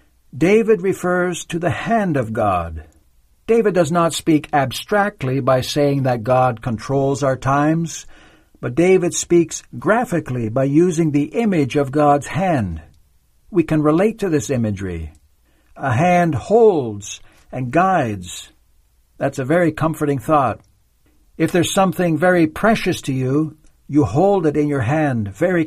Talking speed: 140 wpm